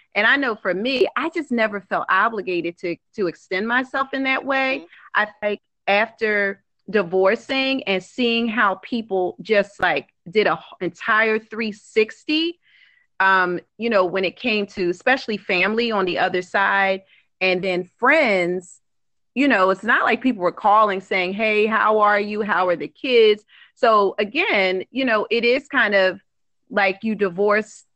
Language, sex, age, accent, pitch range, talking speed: English, female, 30-49, American, 180-230 Hz, 160 wpm